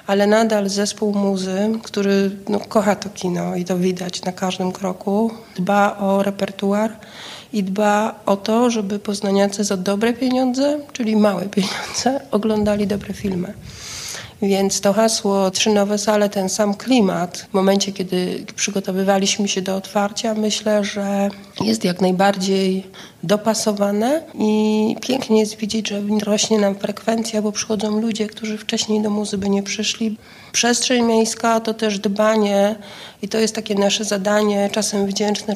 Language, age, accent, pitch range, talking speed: Polish, 30-49, native, 200-215 Hz, 140 wpm